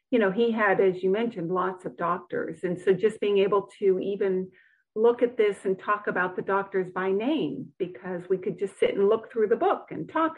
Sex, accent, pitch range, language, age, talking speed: female, American, 195-240 Hz, English, 50-69, 225 wpm